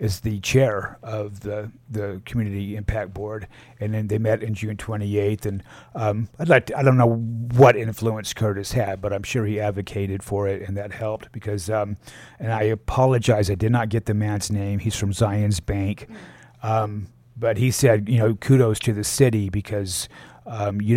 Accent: American